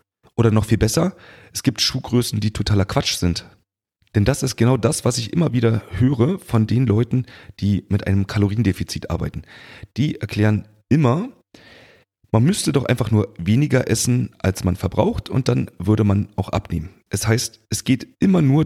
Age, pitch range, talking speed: 40-59, 100-120 Hz, 175 wpm